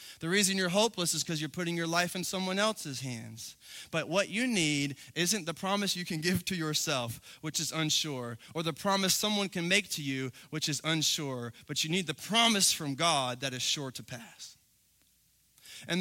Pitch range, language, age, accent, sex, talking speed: 155-230 Hz, English, 20-39, American, male, 200 wpm